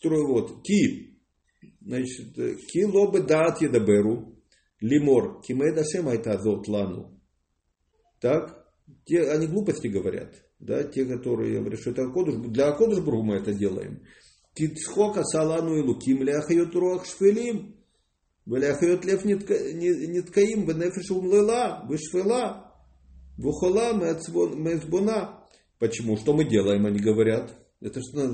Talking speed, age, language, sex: 135 wpm, 50-69, English, male